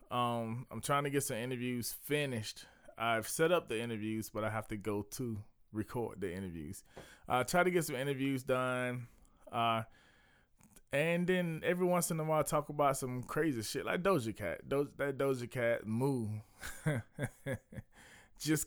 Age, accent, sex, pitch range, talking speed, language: 20-39, American, male, 105-130 Hz, 170 wpm, English